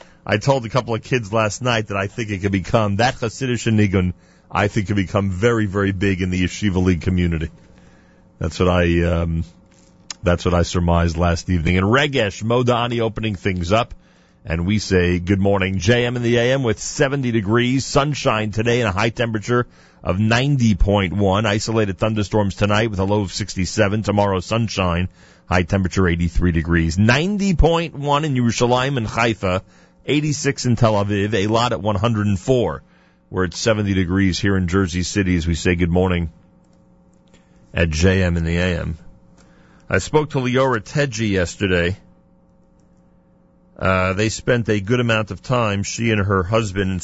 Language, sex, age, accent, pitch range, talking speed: English, male, 40-59, American, 90-115 Hz, 165 wpm